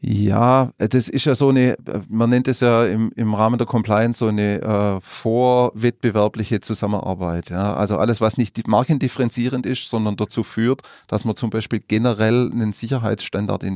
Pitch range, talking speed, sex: 105-120 Hz, 160 wpm, male